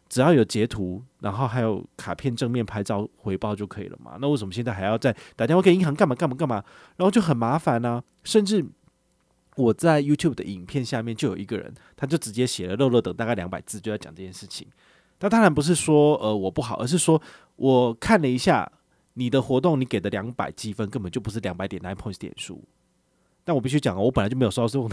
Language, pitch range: Chinese, 100-140 Hz